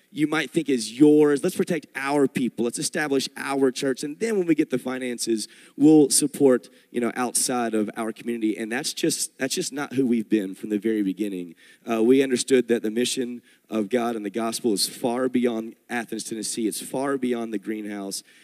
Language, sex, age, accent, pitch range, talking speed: English, male, 30-49, American, 120-155 Hz, 200 wpm